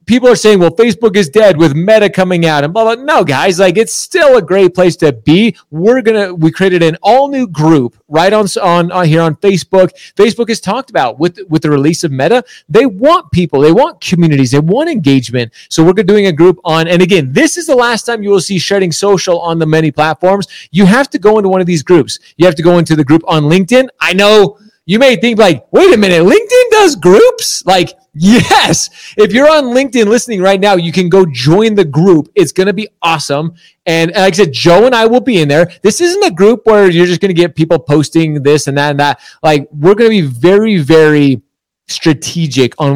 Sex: male